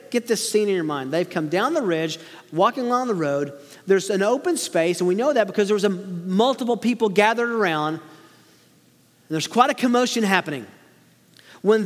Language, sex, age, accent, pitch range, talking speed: English, male, 40-59, American, 175-235 Hz, 190 wpm